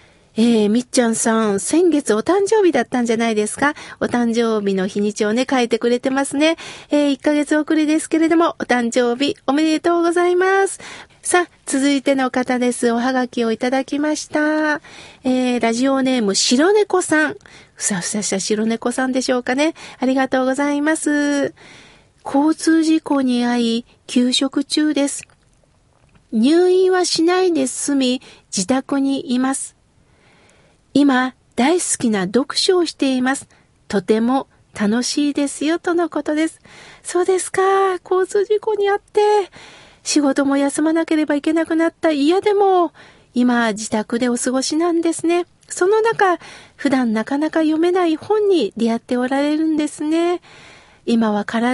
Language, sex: Japanese, female